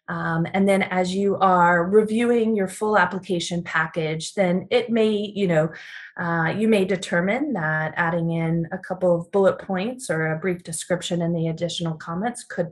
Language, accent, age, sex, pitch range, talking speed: English, American, 30-49, female, 170-200 Hz, 175 wpm